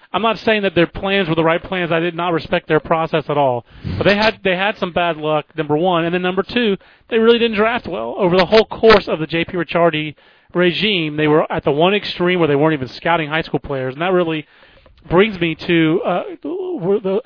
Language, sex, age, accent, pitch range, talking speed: English, male, 30-49, American, 145-175 Hz, 235 wpm